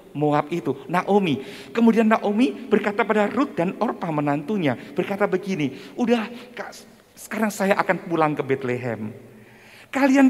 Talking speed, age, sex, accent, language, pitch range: 120 wpm, 50-69, male, native, Indonesian, 150-235 Hz